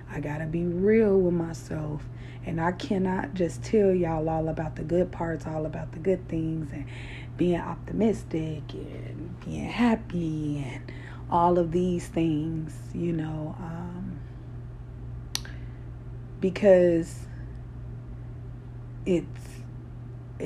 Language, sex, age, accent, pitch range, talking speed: English, female, 30-49, American, 120-180 Hz, 115 wpm